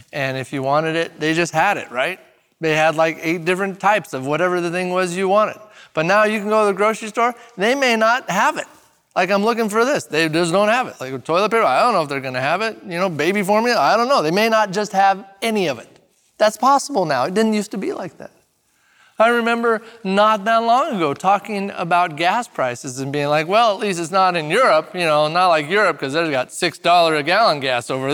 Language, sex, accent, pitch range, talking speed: English, male, American, 160-230 Hz, 250 wpm